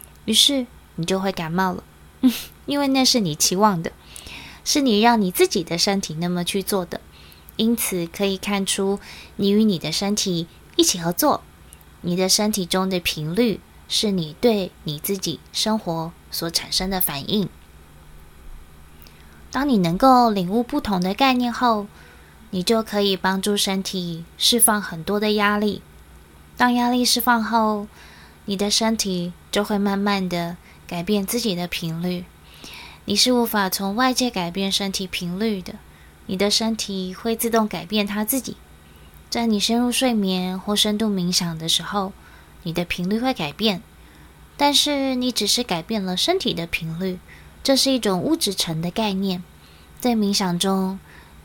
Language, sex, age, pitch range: Chinese, female, 20-39, 175-220 Hz